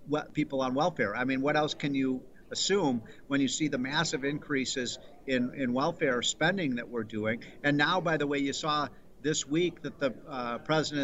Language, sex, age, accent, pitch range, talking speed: English, male, 50-69, American, 140-180 Hz, 195 wpm